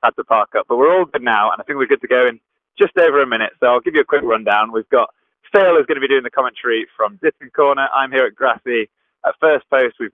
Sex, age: male, 20-39